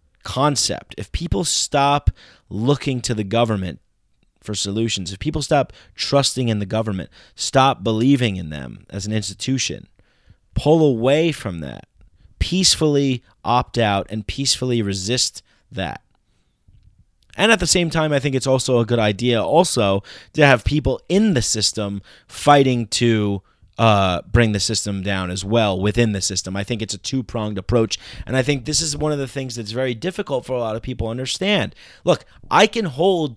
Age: 30-49